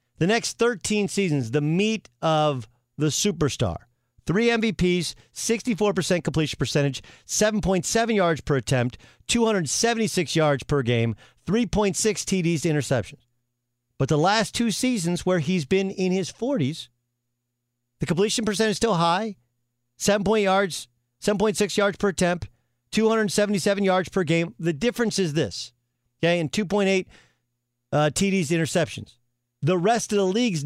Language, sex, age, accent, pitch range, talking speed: English, male, 40-59, American, 120-195 Hz, 135 wpm